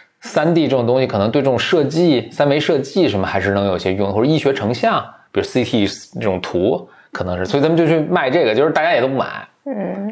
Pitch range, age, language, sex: 105-155 Hz, 20-39, Chinese, male